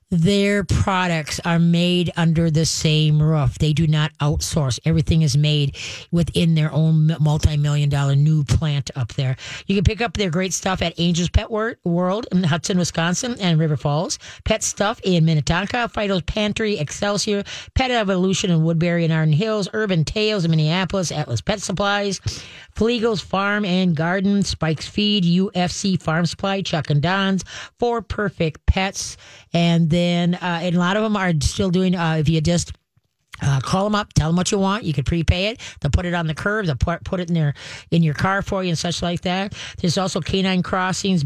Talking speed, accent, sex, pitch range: 190 wpm, American, female, 160-195 Hz